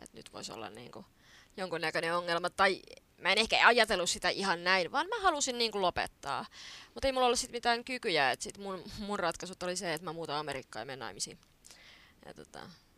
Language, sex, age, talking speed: Finnish, female, 20-39, 190 wpm